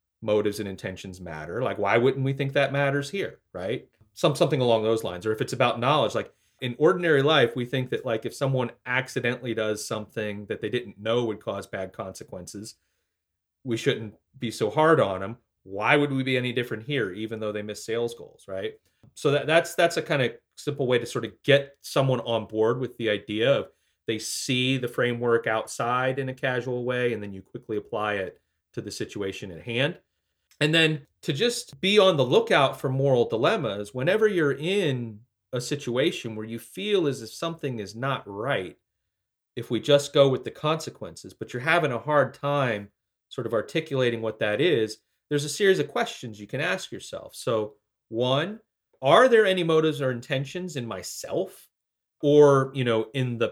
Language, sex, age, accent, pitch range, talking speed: English, male, 30-49, American, 110-140 Hz, 195 wpm